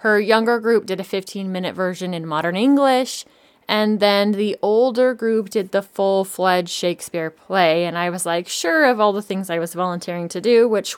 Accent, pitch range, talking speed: American, 180-220 Hz, 190 wpm